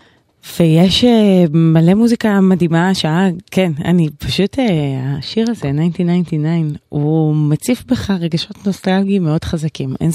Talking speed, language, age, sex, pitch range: 110 wpm, Hebrew, 20-39, female, 150-190 Hz